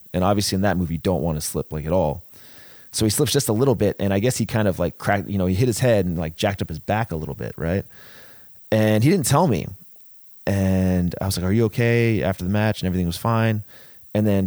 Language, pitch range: English, 85-105 Hz